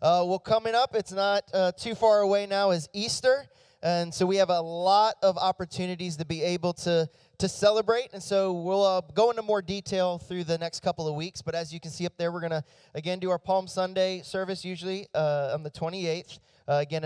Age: 20-39